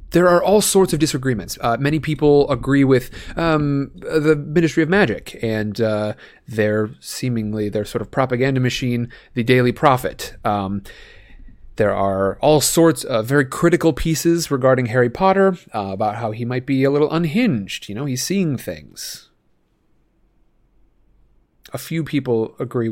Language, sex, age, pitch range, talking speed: English, male, 30-49, 110-160 Hz, 150 wpm